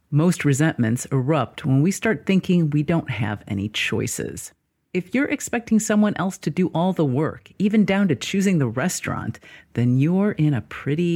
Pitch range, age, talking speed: 125-165 Hz, 40-59, 175 wpm